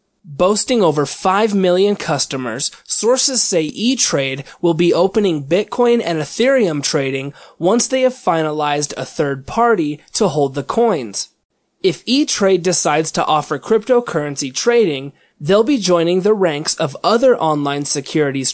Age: 20-39